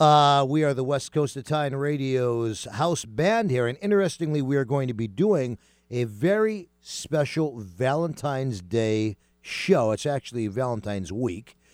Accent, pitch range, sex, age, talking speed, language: American, 115-155 Hz, male, 50-69, 145 wpm, English